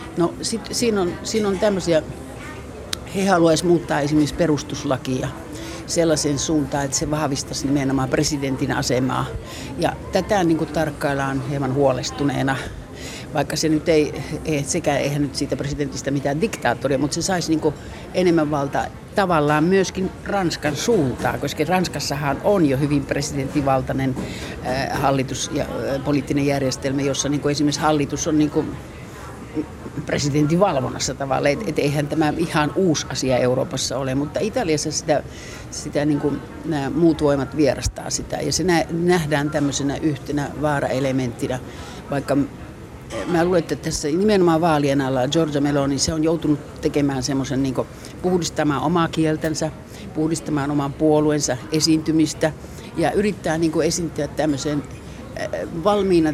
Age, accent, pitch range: 60-79, native, 140-160 Hz